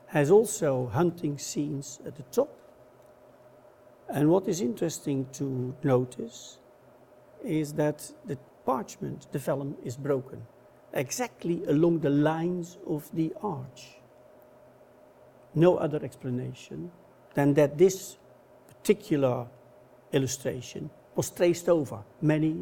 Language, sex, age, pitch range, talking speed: English, male, 60-79, 125-170 Hz, 105 wpm